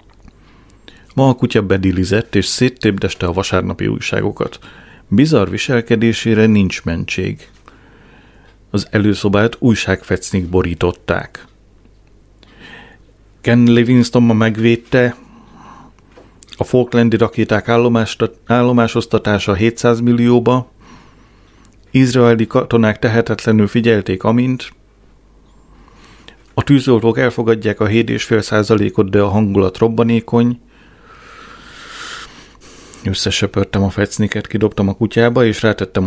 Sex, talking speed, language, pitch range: male, 80 wpm, Hungarian, 100-115 Hz